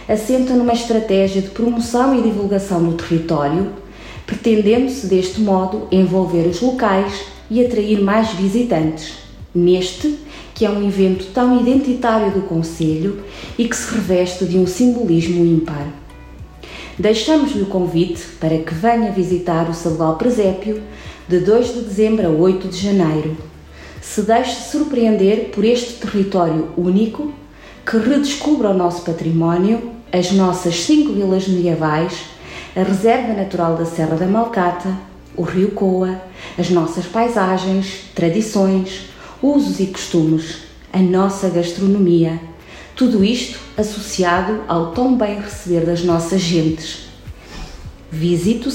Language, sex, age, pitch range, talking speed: Portuguese, female, 20-39, 175-225 Hz, 125 wpm